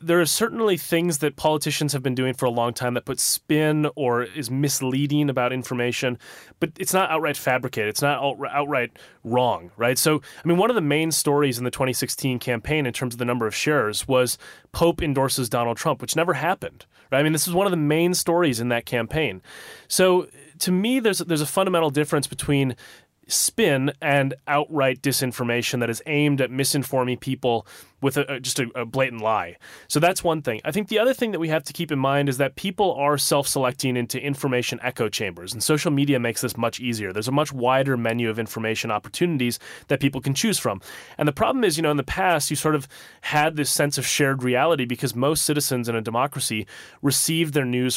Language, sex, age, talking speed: English, male, 30-49, 210 wpm